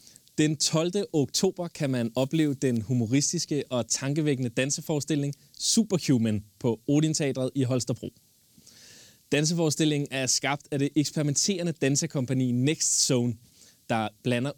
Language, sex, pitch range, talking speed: Danish, male, 125-160 Hz, 110 wpm